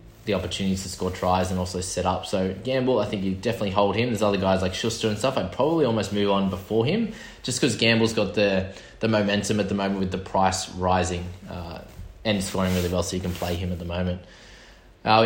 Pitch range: 95-110 Hz